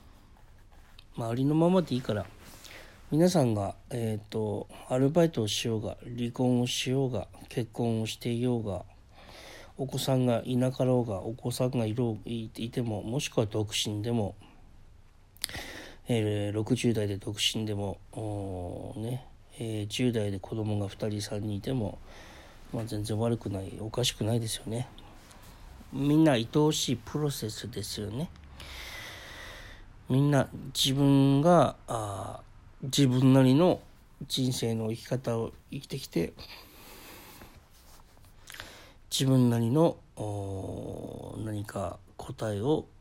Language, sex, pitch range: Japanese, male, 105-130 Hz